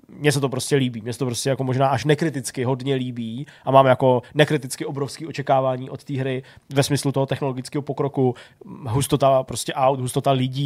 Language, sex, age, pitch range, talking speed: Czech, male, 20-39, 135-155 Hz, 190 wpm